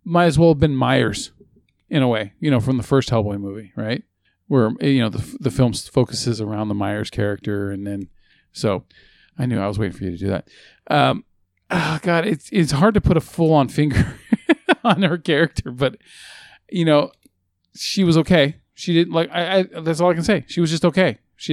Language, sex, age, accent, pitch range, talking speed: English, male, 40-59, American, 110-145 Hz, 215 wpm